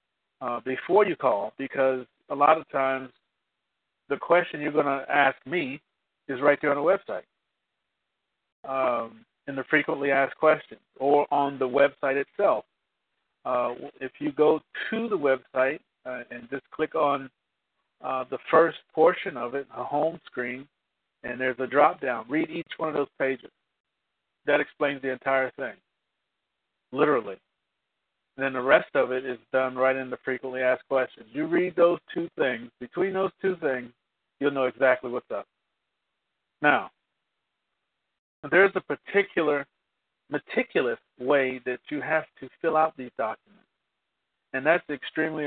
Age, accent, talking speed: 50-69, American, 150 wpm